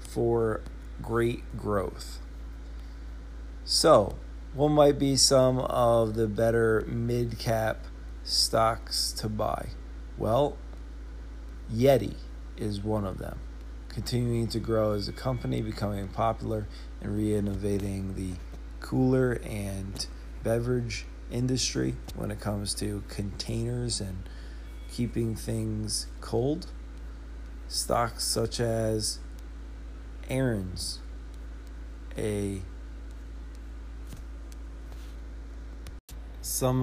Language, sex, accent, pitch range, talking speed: English, male, American, 65-110 Hz, 85 wpm